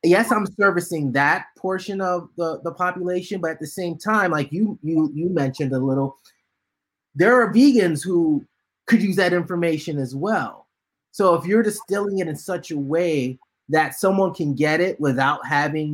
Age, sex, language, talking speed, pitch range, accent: 30-49, male, English, 175 wpm, 135-175 Hz, American